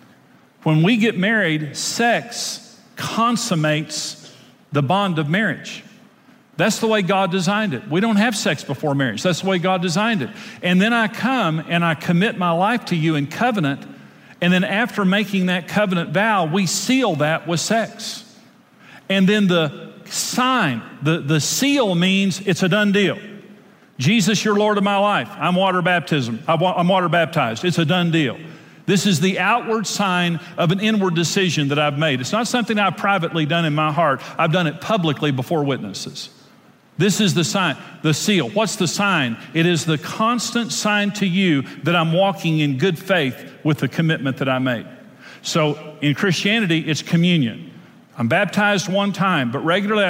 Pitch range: 160-205 Hz